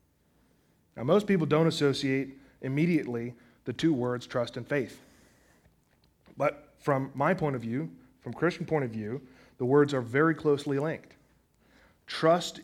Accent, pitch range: American, 120-150 Hz